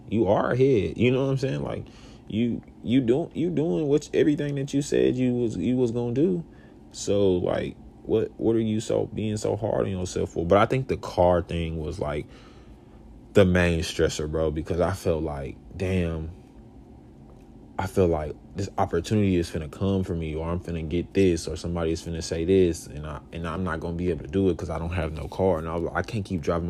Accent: American